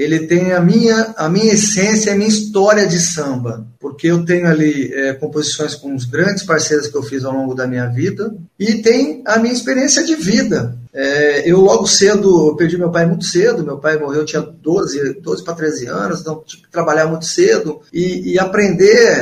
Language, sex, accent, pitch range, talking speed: Portuguese, male, Brazilian, 150-195 Hz, 205 wpm